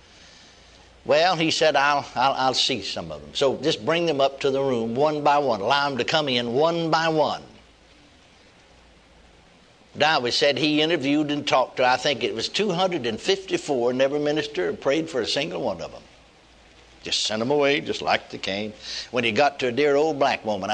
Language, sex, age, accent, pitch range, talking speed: English, male, 60-79, American, 120-150 Hz, 200 wpm